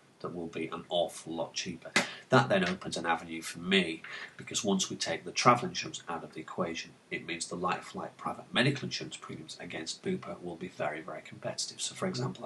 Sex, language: male, English